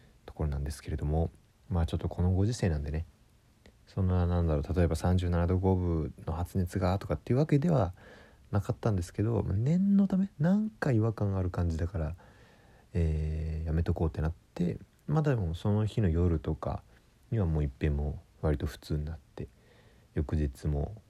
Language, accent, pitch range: Japanese, native, 75-105 Hz